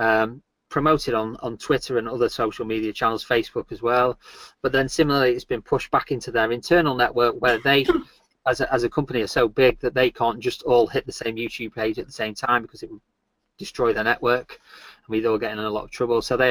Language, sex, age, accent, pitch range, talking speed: English, male, 20-39, British, 115-130 Hz, 235 wpm